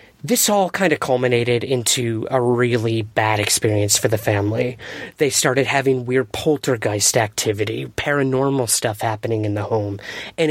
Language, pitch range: English, 120-150 Hz